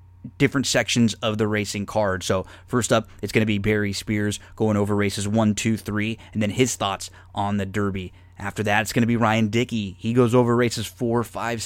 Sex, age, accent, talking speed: male, 20-39, American, 215 wpm